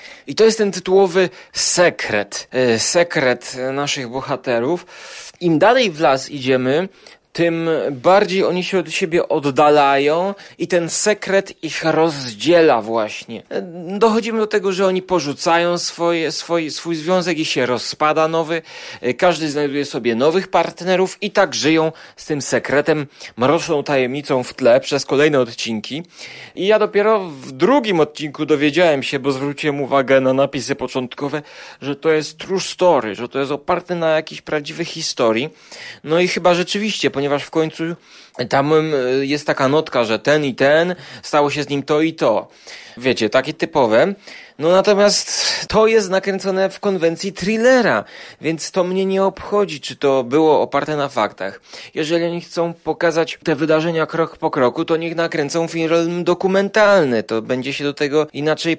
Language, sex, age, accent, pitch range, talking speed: Polish, male, 30-49, native, 145-185 Hz, 155 wpm